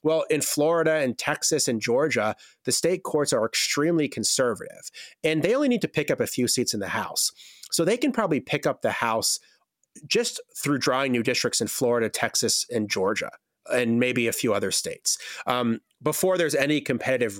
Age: 30-49